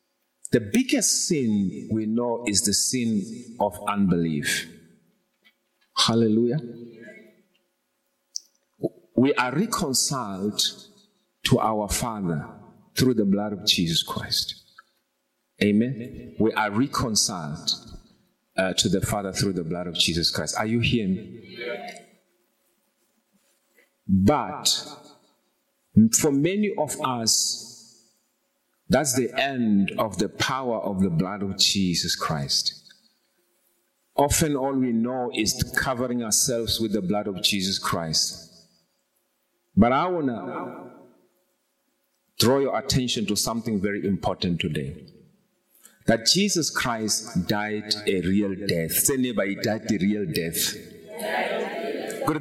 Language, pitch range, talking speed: English, 100-135 Hz, 110 wpm